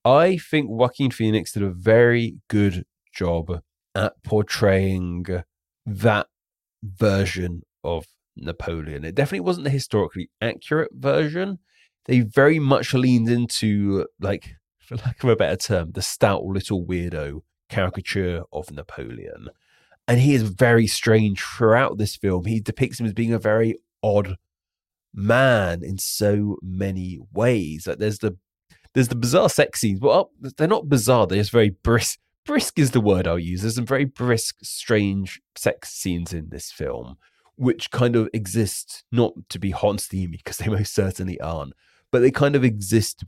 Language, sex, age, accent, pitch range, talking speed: English, male, 30-49, British, 90-120 Hz, 160 wpm